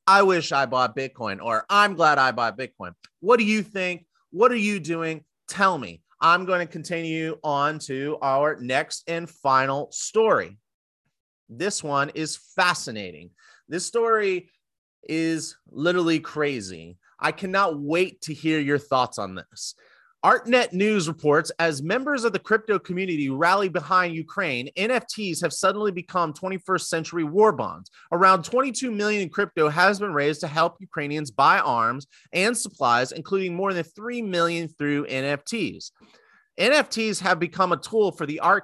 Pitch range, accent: 145-195 Hz, American